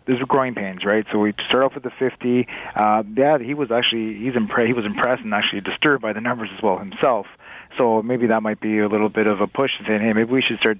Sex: male